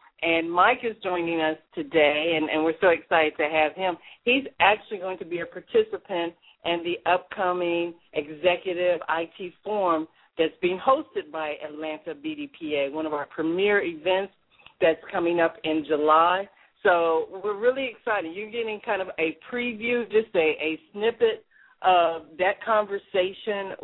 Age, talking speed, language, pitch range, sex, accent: 50-69, 150 wpm, English, 165-210 Hz, female, American